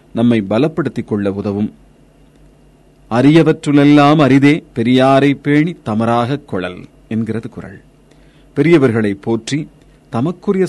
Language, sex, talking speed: Tamil, male, 85 wpm